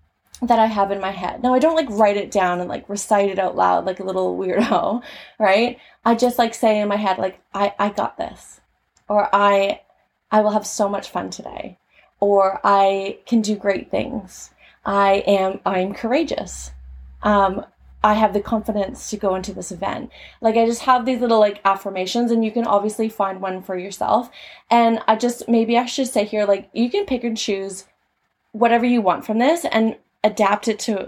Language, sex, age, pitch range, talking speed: English, female, 20-39, 195-235 Hz, 200 wpm